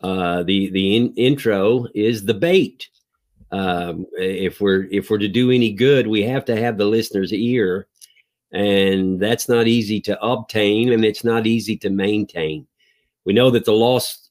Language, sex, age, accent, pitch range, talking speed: English, male, 50-69, American, 100-125 Hz, 170 wpm